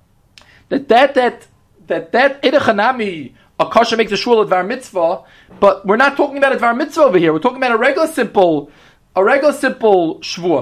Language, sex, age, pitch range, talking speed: English, male, 30-49, 200-265 Hz, 190 wpm